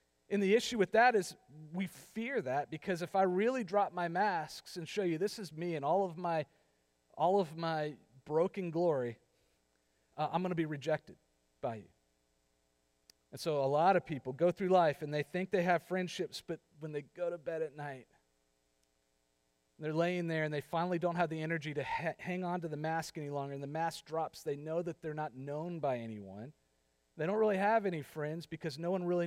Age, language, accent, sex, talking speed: 40-59, English, American, male, 205 wpm